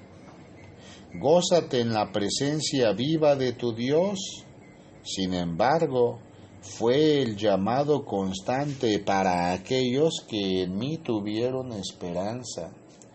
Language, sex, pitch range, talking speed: Spanish, male, 95-135 Hz, 95 wpm